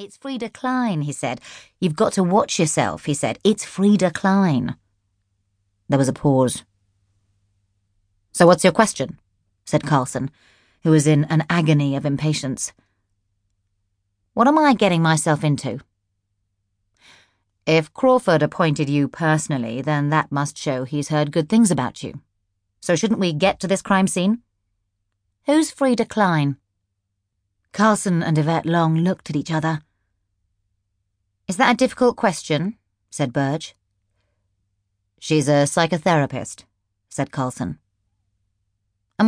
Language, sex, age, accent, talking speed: English, female, 30-49, British, 130 wpm